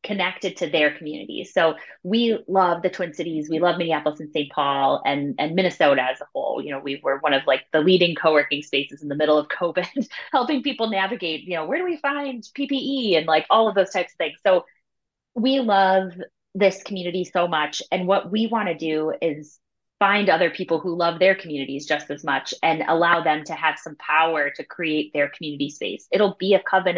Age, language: 20-39, English